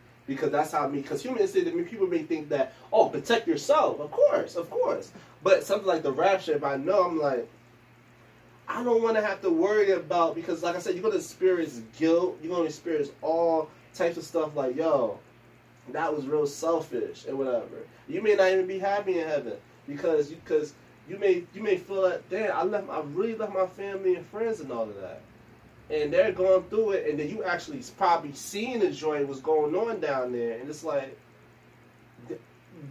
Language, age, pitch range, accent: English, 20-39, 130-190 Hz, American